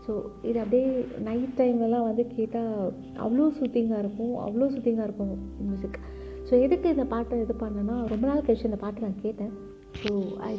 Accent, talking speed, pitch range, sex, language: native, 170 wpm, 200-245 Hz, female, Tamil